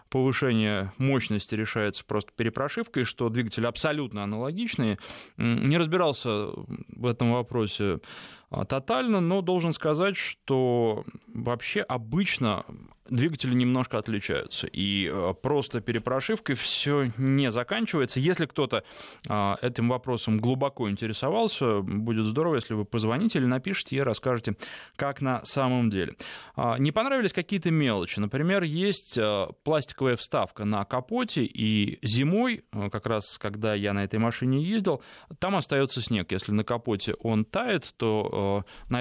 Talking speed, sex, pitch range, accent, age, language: 120 wpm, male, 110-145 Hz, native, 20-39, Russian